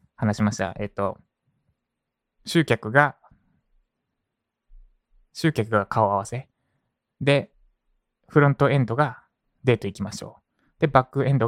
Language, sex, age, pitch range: Japanese, male, 20-39, 110-155 Hz